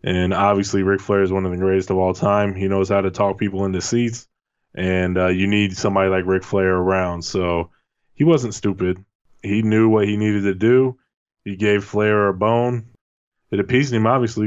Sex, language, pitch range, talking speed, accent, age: male, English, 95-105 Hz, 205 wpm, American, 20-39